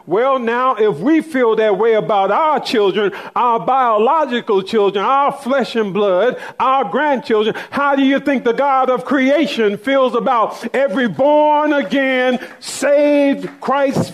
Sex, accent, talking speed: male, American, 145 wpm